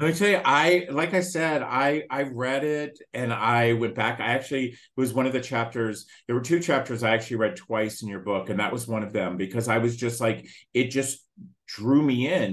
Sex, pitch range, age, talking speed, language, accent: male, 105-145 Hz, 40-59, 245 wpm, English, American